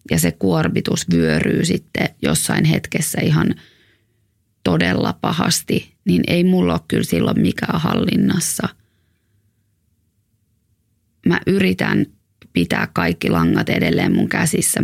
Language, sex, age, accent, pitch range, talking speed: English, female, 20-39, Finnish, 85-110 Hz, 105 wpm